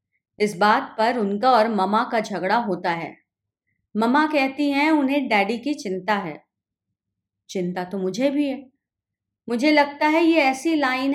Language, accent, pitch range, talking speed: Hindi, native, 165-265 Hz, 155 wpm